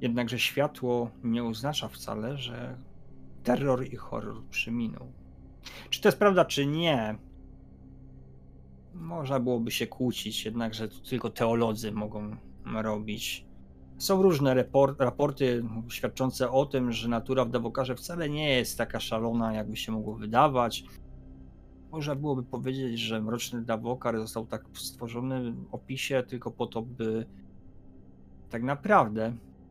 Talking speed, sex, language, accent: 125 wpm, male, Polish, native